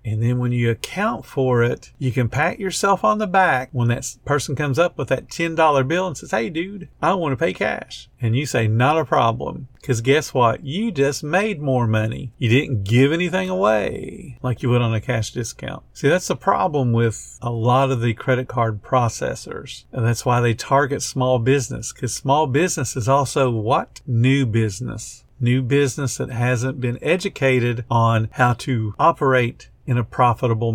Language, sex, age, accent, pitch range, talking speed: English, male, 50-69, American, 120-160 Hz, 190 wpm